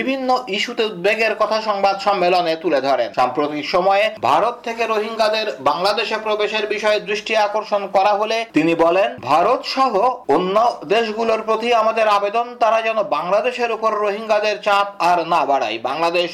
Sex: male